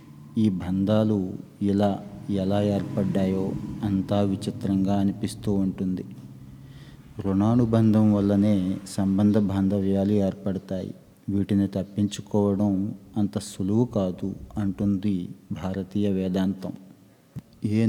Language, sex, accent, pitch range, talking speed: Telugu, male, native, 95-105 Hz, 75 wpm